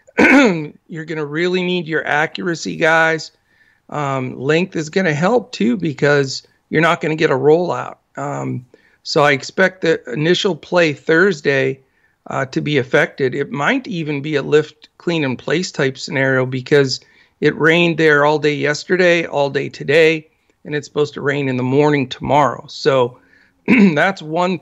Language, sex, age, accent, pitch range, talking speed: English, male, 50-69, American, 140-170 Hz, 160 wpm